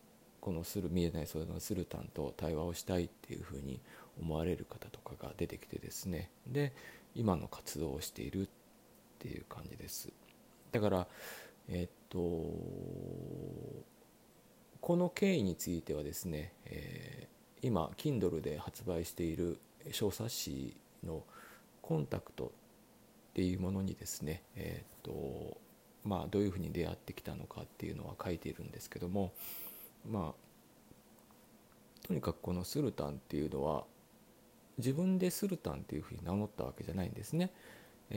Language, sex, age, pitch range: Japanese, male, 40-59, 85-125 Hz